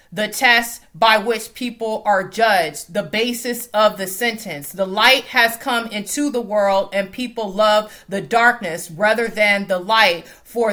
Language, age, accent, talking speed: English, 30-49, American, 160 wpm